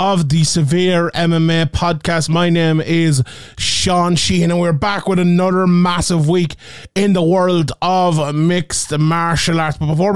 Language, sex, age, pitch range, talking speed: English, male, 30-49, 160-195 Hz, 155 wpm